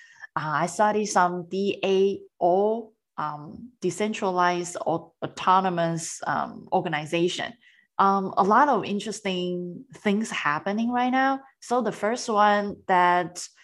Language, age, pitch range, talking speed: English, 20-39, 165-220 Hz, 110 wpm